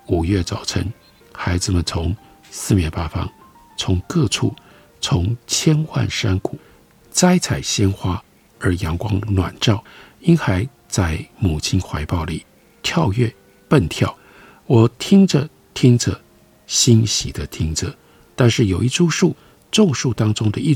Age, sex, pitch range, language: 50-69, male, 90-130 Hz, Chinese